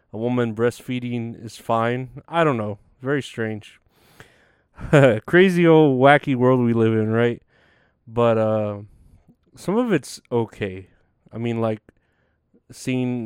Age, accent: 30-49, American